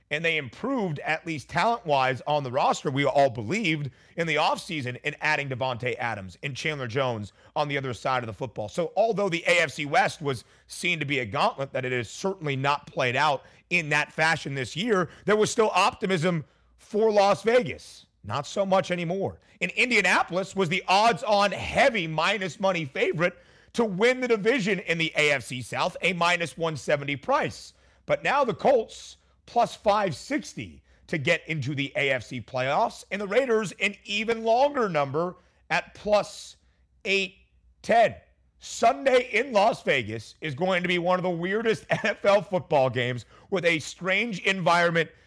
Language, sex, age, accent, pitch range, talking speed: English, male, 40-59, American, 135-195 Hz, 165 wpm